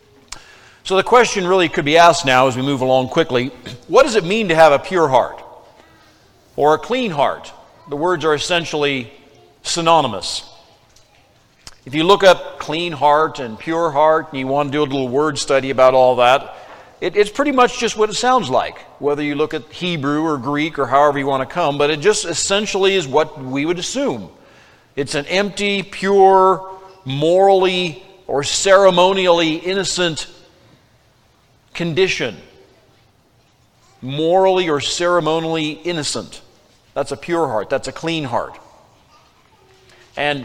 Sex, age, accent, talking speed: male, 50-69, American, 155 wpm